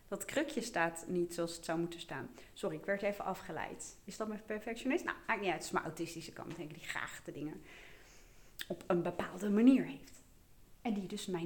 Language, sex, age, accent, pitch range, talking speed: Dutch, female, 30-49, Dutch, 165-220 Hz, 225 wpm